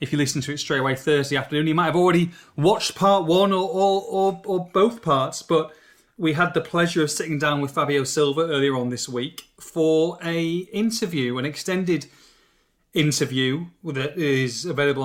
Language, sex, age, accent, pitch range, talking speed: English, male, 30-49, British, 135-165 Hz, 185 wpm